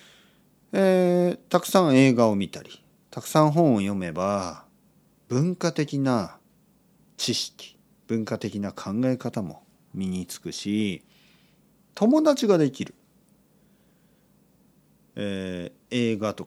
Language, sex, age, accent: Japanese, male, 40-59, native